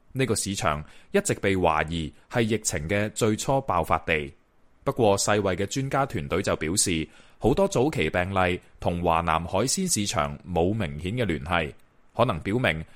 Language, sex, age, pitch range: Chinese, male, 20-39, 85-125 Hz